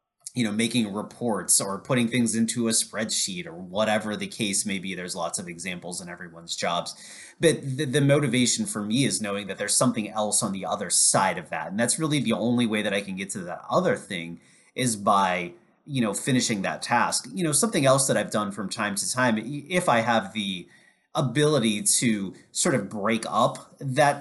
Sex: male